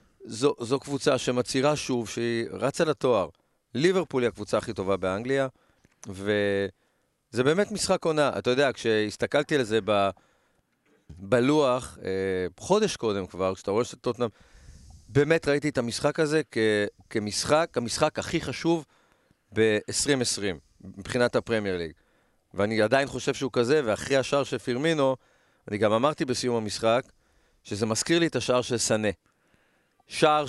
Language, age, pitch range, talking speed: Hebrew, 40-59, 105-140 Hz, 130 wpm